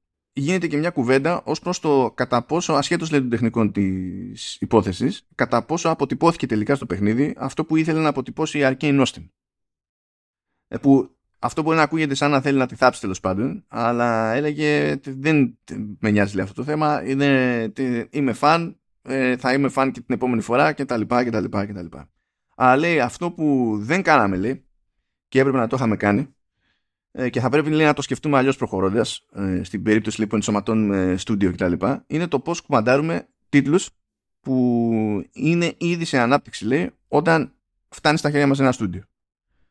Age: 20-39